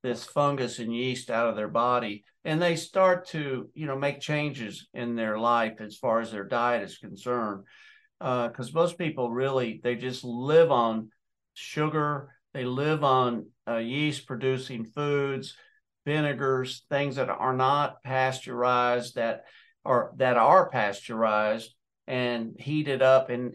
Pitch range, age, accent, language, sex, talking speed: 120-145 Hz, 50-69, American, English, male, 150 wpm